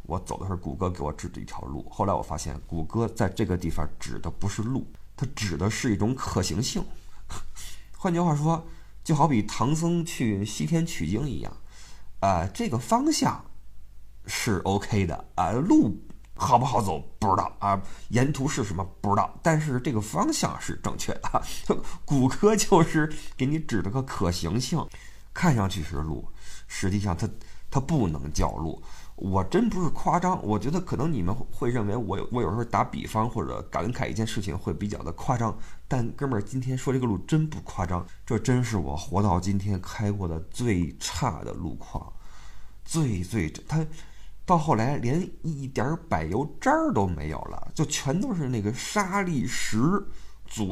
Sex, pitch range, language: male, 95-145 Hz, Chinese